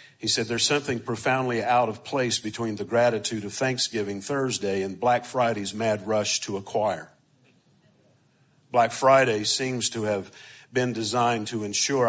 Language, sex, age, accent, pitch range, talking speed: English, male, 50-69, American, 110-130 Hz, 150 wpm